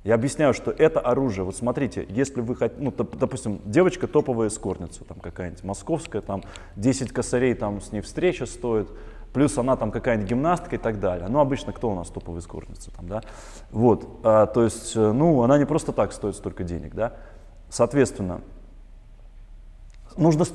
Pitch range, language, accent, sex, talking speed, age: 110-150 Hz, Russian, native, male, 165 wpm, 20-39